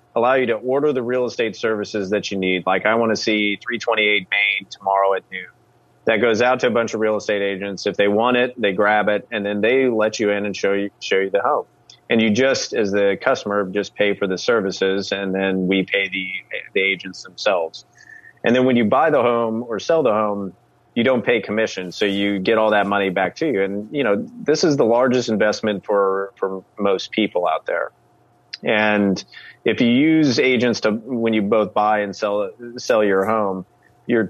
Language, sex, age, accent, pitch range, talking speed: English, male, 30-49, American, 100-115 Hz, 215 wpm